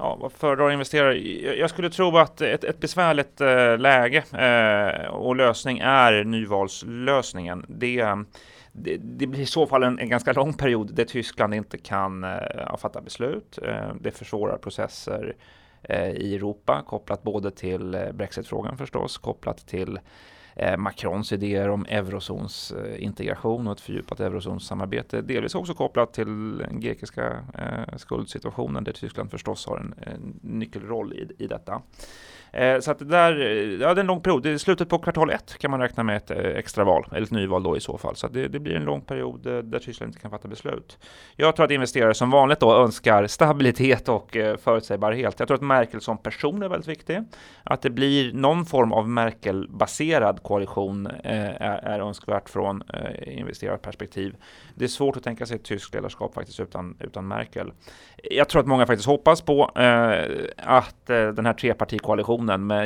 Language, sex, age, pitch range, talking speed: Swedish, male, 30-49, 105-140 Hz, 165 wpm